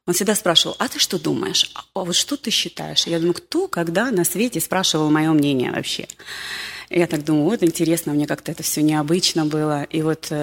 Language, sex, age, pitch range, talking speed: Russian, female, 30-49, 165-200 Hz, 215 wpm